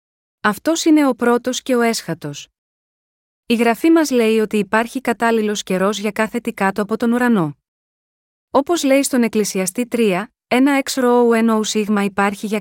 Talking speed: 160 wpm